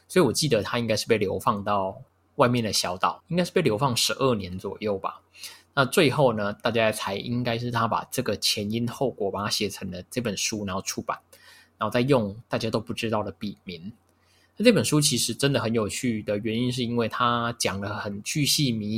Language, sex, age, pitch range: Chinese, male, 20-39, 100-125 Hz